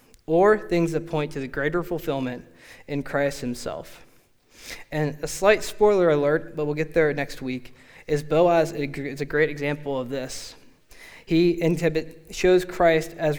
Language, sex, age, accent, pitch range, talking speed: English, male, 20-39, American, 140-170 Hz, 150 wpm